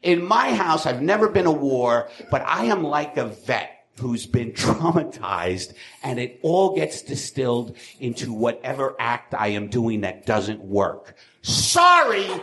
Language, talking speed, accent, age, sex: English, 155 wpm, American, 50-69, male